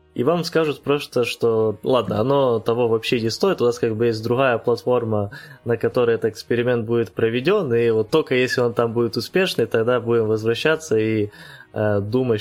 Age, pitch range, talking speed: 20-39, 105-120 Hz, 185 wpm